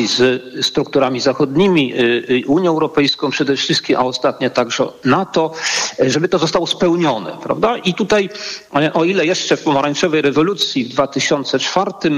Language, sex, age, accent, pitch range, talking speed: Polish, male, 50-69, native, 140-175 Hz, 130 wpm